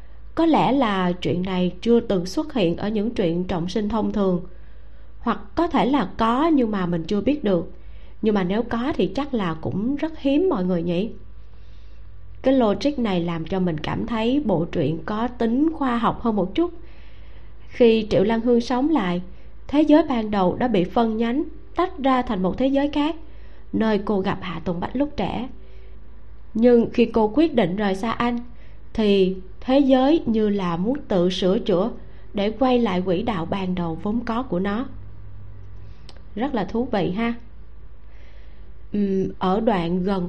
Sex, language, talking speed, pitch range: female, Vietnamese, 185 wpm, 180-245 Hz